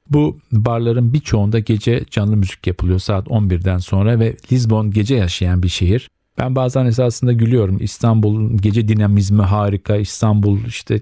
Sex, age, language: male, 50-69, Turkish